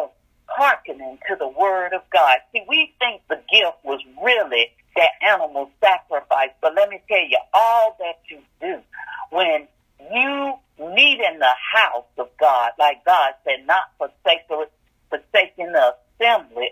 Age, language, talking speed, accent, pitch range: 50-69, English, 145 wpm, American, 200-310 Hz